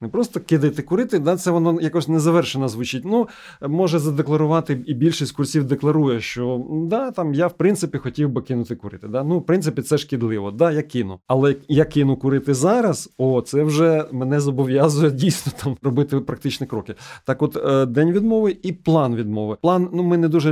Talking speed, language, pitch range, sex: 185 wpm, Ukrainian, 125-160 Hz, male